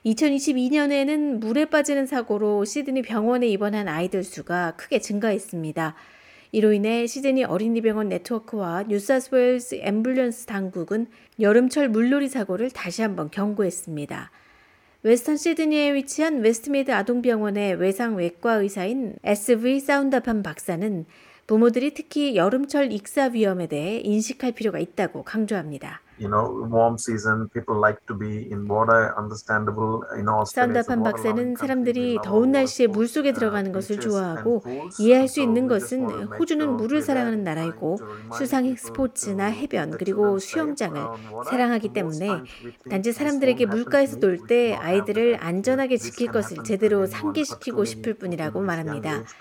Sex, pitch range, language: female, 185-250 Hz, Korean